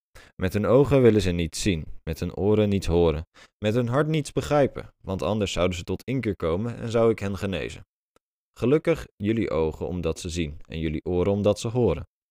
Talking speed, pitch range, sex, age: 200 wpm, 85-115 Hz, male, 20-39